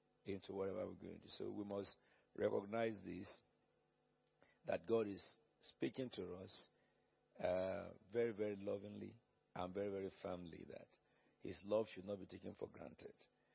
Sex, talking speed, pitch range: male, 150 wpm, 100-120 Hz